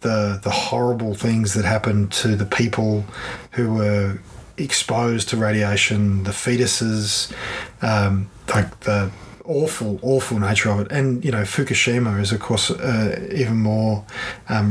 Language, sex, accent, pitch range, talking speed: English, male, Australian, 105-120 Hz, 145 wpm